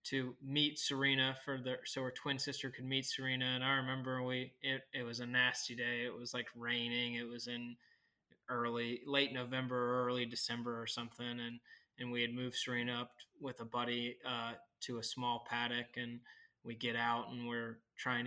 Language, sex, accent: English, male, American